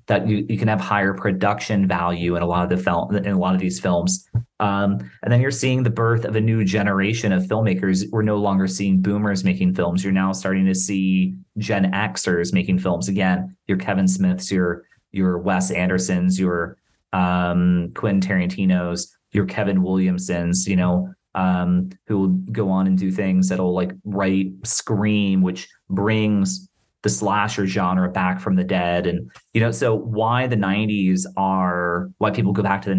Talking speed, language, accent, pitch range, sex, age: 185 wpm, English, American, 95-105 Hz, male, 30-49